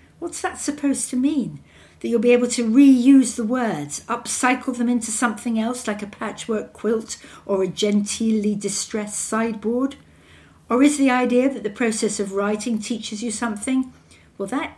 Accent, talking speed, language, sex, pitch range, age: British, 165 wpm, English, female, 160-230 Hz, 60-79